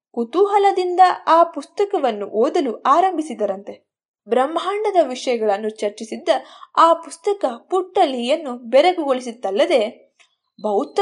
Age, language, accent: 20-39, Kannada, native